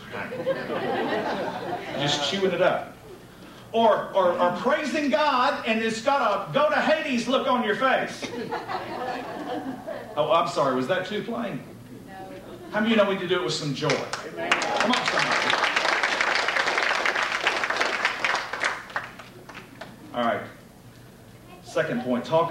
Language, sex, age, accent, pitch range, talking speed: English, male, 40-59, American, 140-190 Hz, 125 wpm